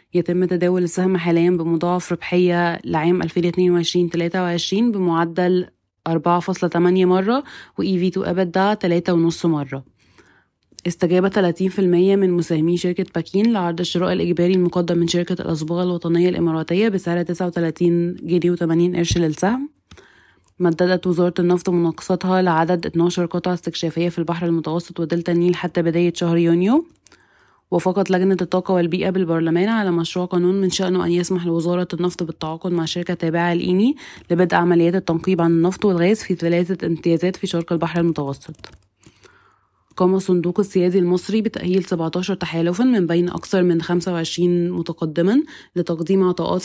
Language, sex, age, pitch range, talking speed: Arabic, female, 20-39, 170-185 Hz, 125 wpm